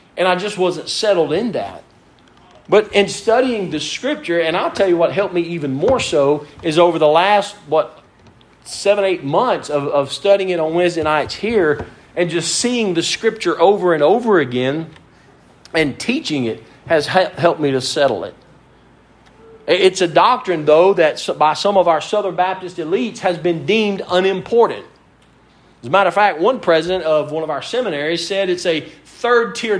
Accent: American